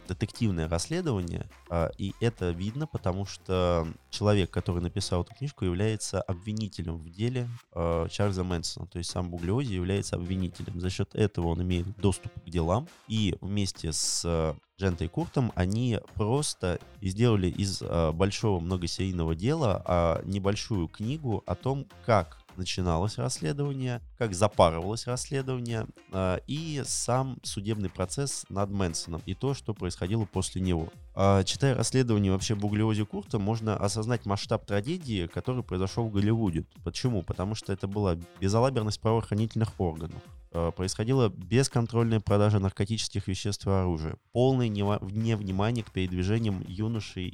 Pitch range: 90-110 Hz